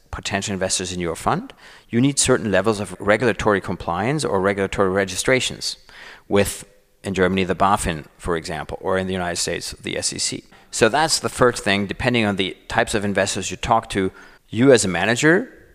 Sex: male